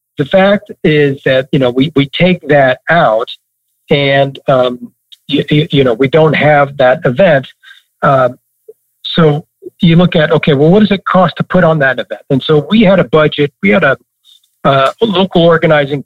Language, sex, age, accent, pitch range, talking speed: English, male, 50-69, American, 130-170 Hz, 185 wpm